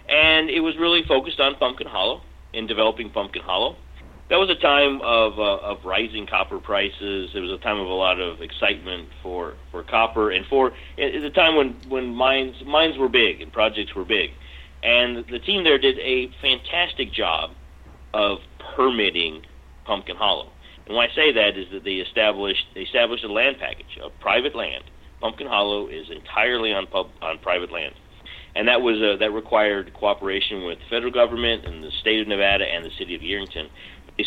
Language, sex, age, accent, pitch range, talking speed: English, male, 40-59, American, 90-120 Hz, 195 wpm